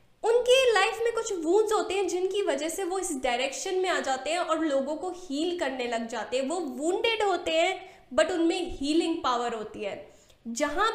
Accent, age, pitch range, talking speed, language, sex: native, 10-29, 280-365 Hz, 195 wpm, Hindi, female